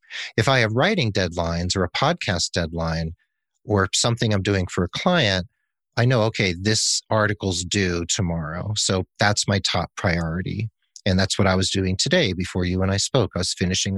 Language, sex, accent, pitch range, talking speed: English, male, American, 95-120 Hz, 185 wpm